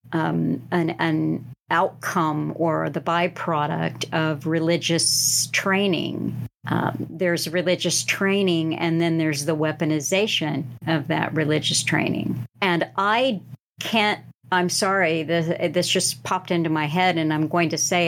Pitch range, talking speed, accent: 155-185 Hz, 135 wpm, American